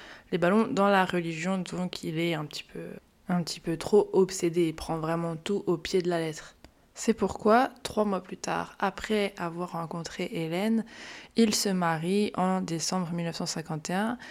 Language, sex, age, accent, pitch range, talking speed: French, female, 20-39, French, 170-205 Hz, 170 wpm